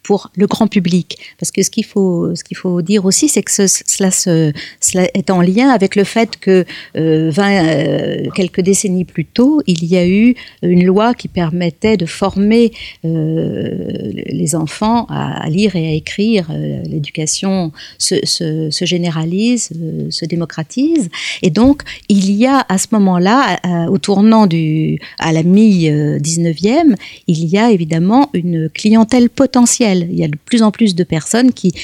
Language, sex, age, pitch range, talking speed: French, female, 50-69, 160-205 Hz, 180 wpm